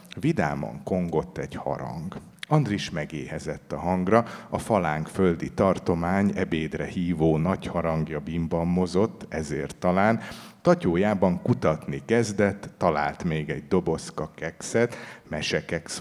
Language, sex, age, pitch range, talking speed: Hungarian, male, 50-69, 80-115 Hz, 110 wpm